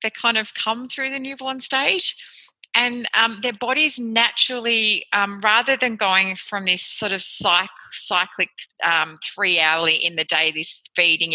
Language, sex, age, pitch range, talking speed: English, female, 30-49, 180-230 Hz, 160 wpm